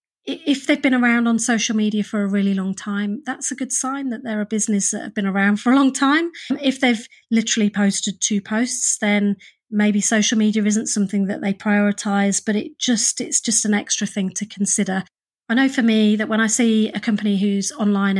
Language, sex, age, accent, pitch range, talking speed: English, female, 30-49, British, 205-260 Hz, 215 wpm